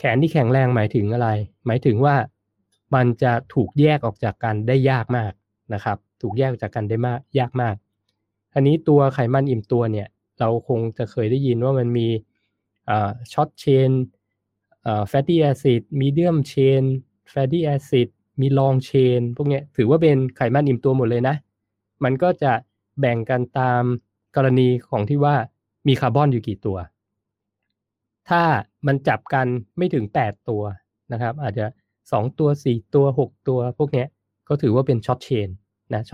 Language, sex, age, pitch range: Thai, male, 20-39, 105-135 Hz